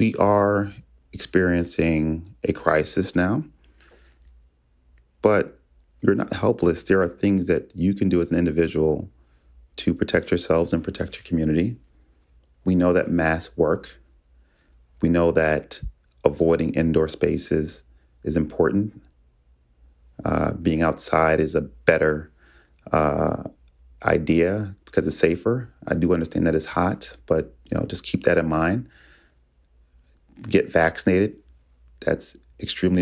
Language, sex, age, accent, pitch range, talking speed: English, male, 30-49, American, 65-95 Hz, 125 wpm